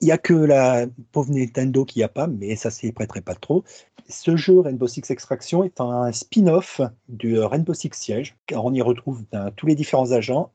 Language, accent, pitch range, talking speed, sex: French, French, 115-145 Hz, 215 wpm, male